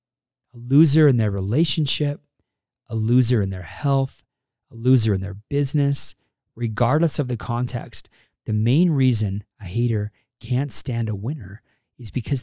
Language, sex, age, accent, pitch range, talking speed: English, male, 40-59, American, 110-145 Hz, 145 wpm